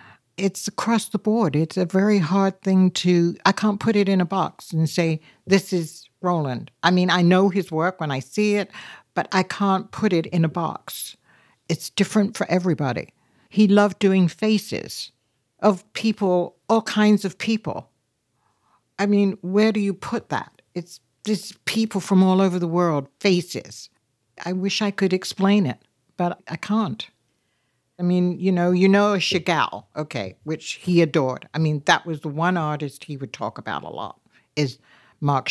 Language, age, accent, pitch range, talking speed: English, 60-79, American, 155-195 Hz, 175 wpm